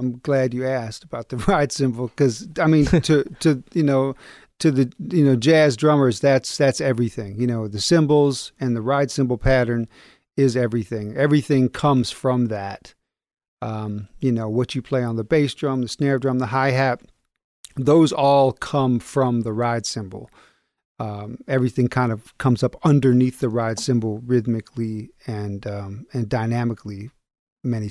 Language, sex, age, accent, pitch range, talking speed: English, male, 40-59, American, 115-140 Hz, 170 wpm